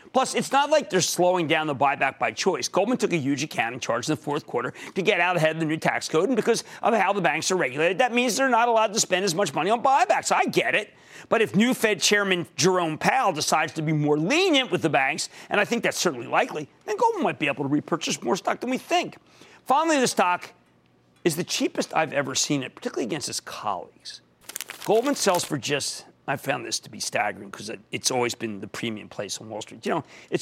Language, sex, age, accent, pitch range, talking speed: English, male, 40-59, American, 140-210 Hz, 245 wpm